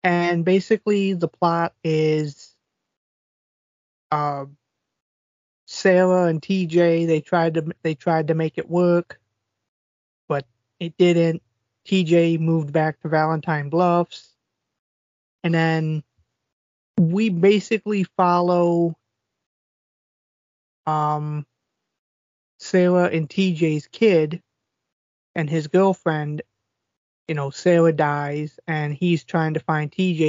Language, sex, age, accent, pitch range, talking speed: English, male, 20-39, American, 145-170 Hz, 95 wpm